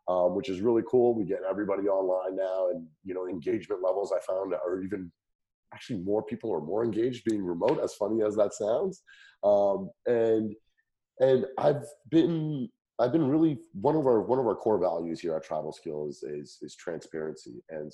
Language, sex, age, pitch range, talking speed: English, male, 30-49, 90-110 Hz, 190 wpm